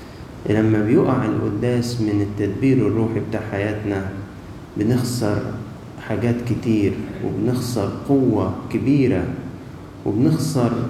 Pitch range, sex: 110-130 Hz, male